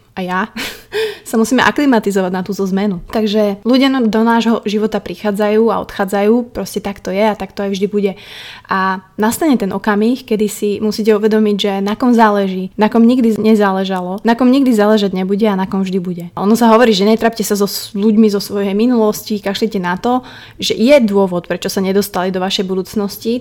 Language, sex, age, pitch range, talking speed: Slovak, female, 20-39, 195-220 Hz, 195 wpm